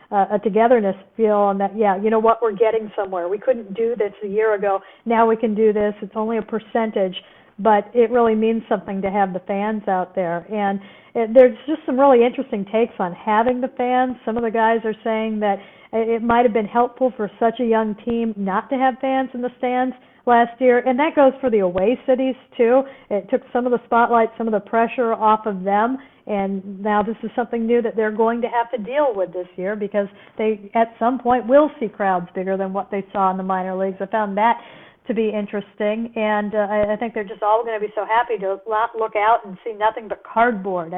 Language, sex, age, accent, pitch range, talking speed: English, female, 50-69, American, 200-235 Hz, 235 wpm